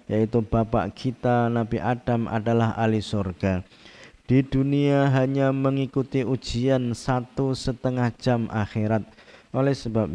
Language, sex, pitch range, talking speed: Indonesian, male, 110-130 Hz, 110 wpm